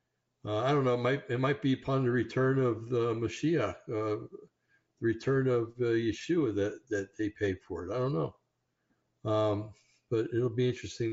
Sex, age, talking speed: male, 60-79, 185 wpm